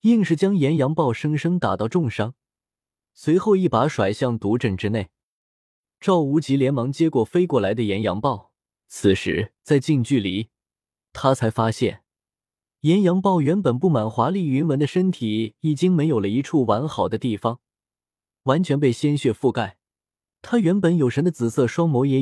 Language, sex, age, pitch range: Chinese, male, 20-39, 115-160 Hz